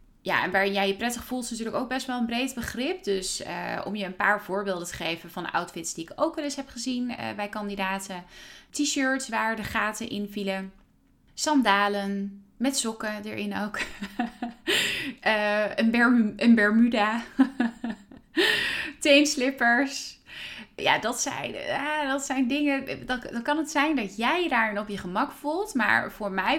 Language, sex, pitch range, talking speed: Dutch, female, 180-240 Hz, 170 wpm